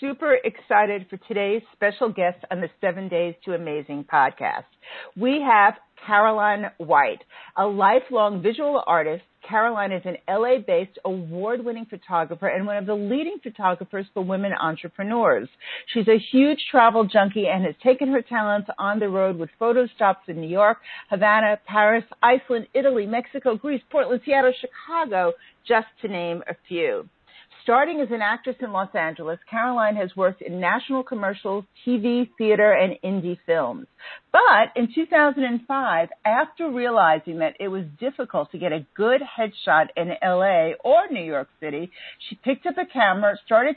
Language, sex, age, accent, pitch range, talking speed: English, female, 50-69, American, 195-265 Hz, 155 wpm